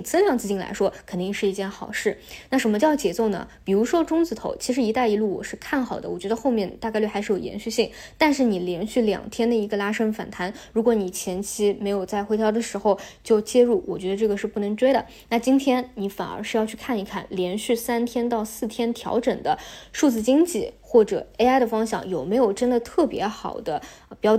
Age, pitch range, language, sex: 20-39, 200-240 Hz, Chinese, female